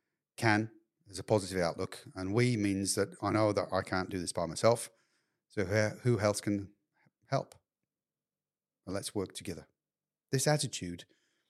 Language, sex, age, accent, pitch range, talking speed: English, male, 40-59, British, 95-115 Hz, 145 wpm